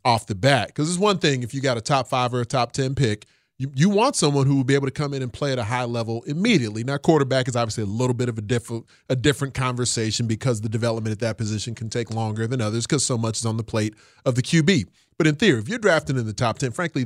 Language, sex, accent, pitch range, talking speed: English, male, American, 115-140 Hz, 285 wpm